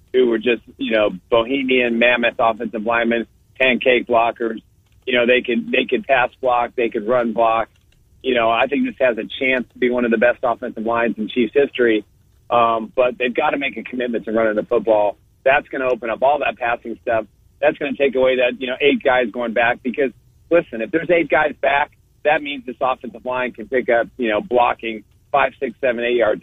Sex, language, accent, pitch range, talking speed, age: male, English, American, 110-130 Hz, 225 wpm, 40-59